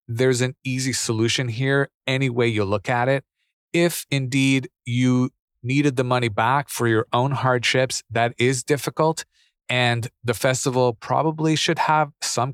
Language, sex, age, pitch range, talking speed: English, male, 30-49, 115-140 Hz, 155 wpm